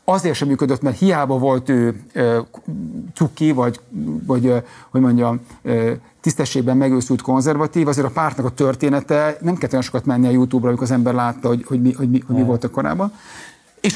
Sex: male